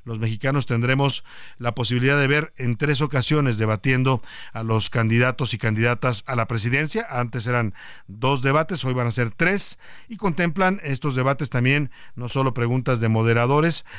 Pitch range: 120-145 Hz